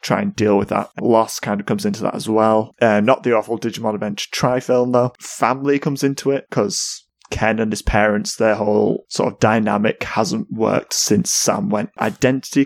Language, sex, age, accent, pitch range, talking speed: English, male, 20-39, British, 105-125 Hz, 205 wpm